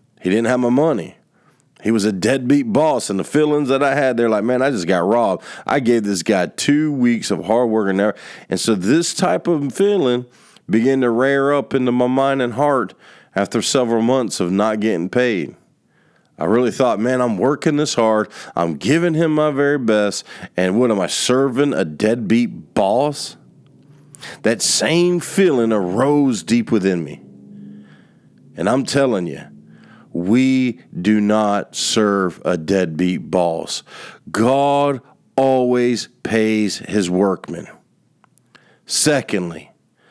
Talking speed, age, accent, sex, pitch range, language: 150 wpm, 40-59, American, male, 100-140 Hz, English